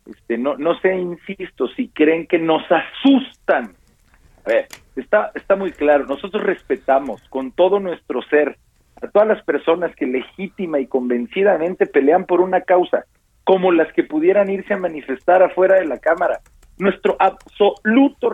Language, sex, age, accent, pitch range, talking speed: Spanish, male, 40-59, Mexican, 180-240 Hz, 155 wpm